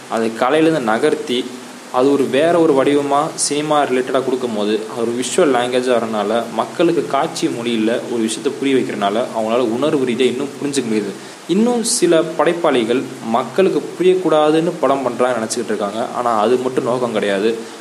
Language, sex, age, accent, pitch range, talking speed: Tamil, male, 20-39, native, 115-150 Hz, 145 wpm